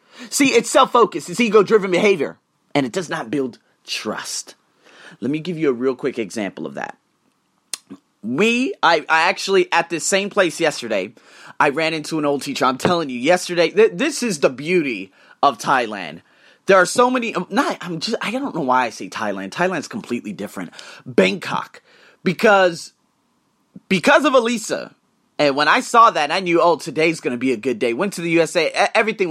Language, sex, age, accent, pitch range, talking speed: English, male, 30-49, American, 145-230 Hz, 175 wpm